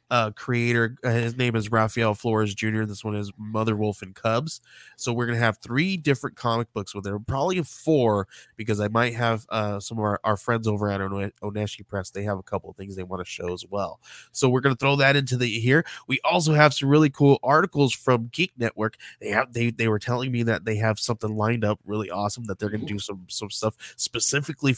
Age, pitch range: 20-39, 105-125 Hz